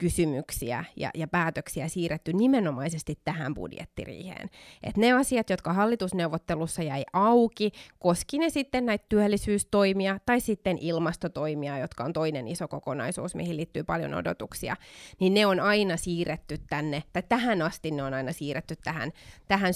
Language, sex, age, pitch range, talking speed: Finnish, female, 20-39, 150-185 Hz, 140 wpm